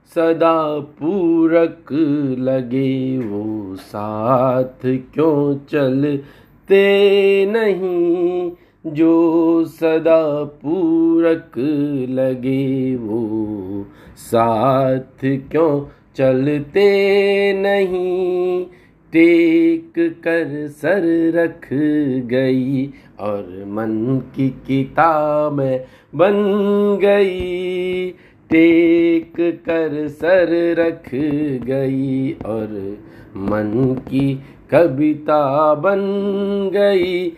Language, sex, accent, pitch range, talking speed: Hindi, male, native, 130-180 Hz, 60 wpm